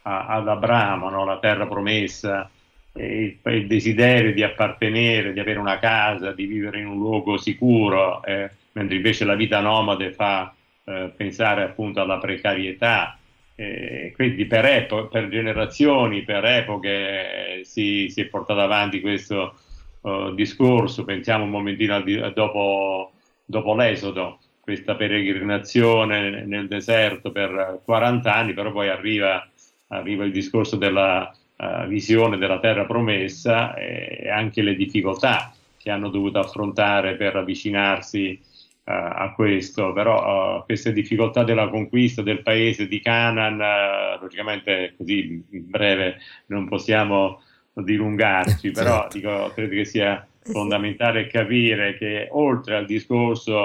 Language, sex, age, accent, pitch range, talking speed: Italian, male, 50-69, native, 100-110 Hz, 130 wpm